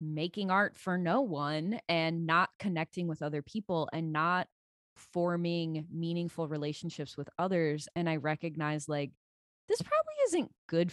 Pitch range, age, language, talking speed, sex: 155-190 Hz, 20-39, English, 145 wpm, female